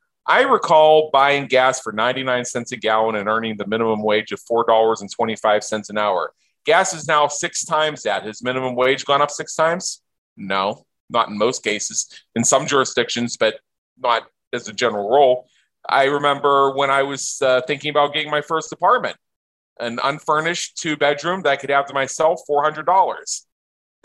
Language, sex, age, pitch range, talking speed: English, male, 30-49, 130-165 Hz, 165 wpm